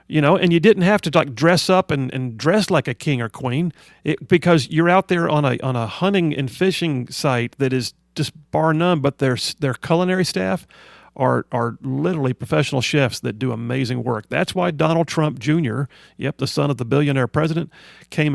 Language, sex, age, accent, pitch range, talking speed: English, male, 40-59, American, 130-170 Hz, 205 wpm